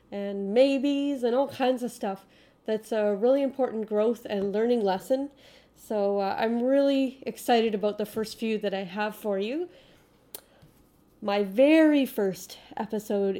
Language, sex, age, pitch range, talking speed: English, female, 30-49, 200-245 Hz, 150 wpm